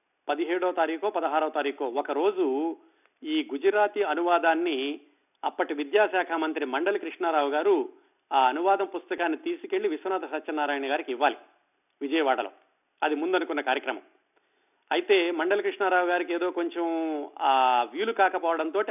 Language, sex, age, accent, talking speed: Telugu, male, 40-59, native, 110 wpm